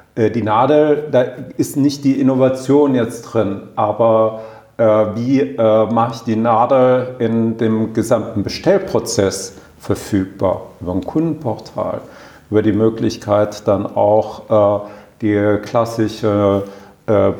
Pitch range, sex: 110-130 Hz, male